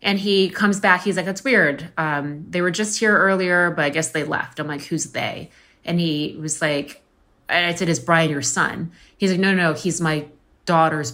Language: English